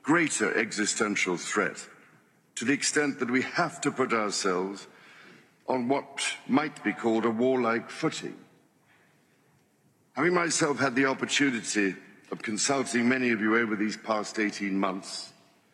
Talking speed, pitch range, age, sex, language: 135 wpm, 110-135 Hz, 60-79, male, English